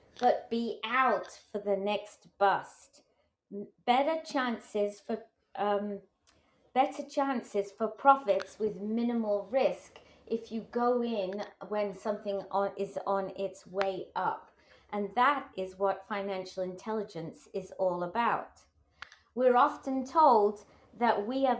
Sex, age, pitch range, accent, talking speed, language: female, 30-49, 200-245 Hz, British, 125 wpm, English